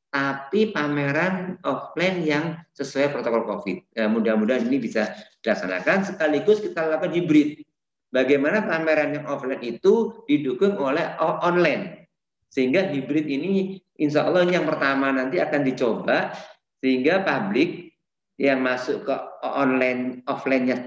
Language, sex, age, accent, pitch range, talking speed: Indonesian, male, 50-69, native, 130-180 Hz, 120 wpm